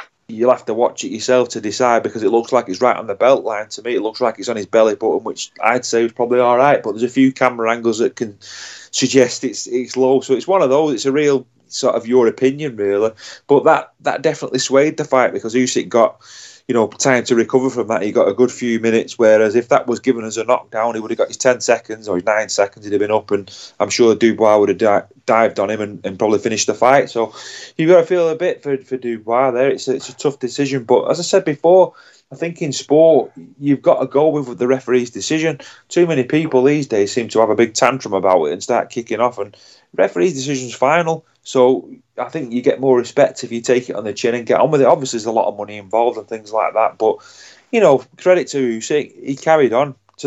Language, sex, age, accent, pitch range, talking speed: English, male, 30-49, British, 115-140 Hz, 260 wpm